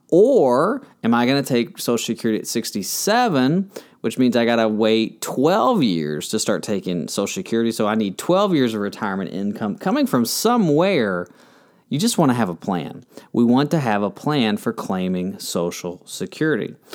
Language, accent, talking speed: English, American, 180 wpm